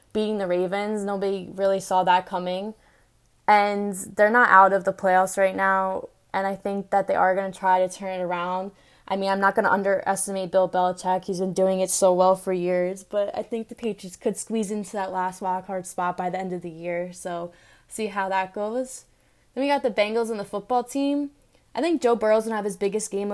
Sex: female